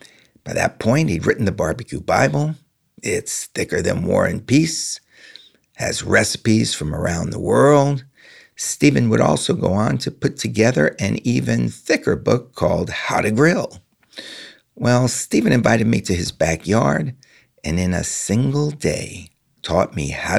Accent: American